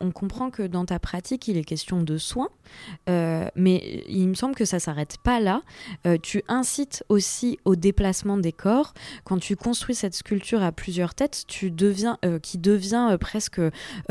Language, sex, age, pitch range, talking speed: French, female, 20-39, 175-225 Hz, 185 wpm